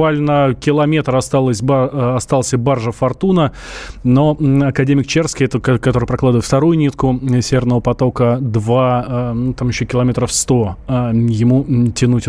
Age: 20-39